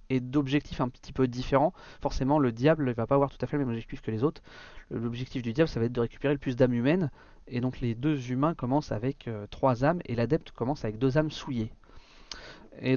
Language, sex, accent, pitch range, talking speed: French, male, French, 120-145 Hz, 240 wpm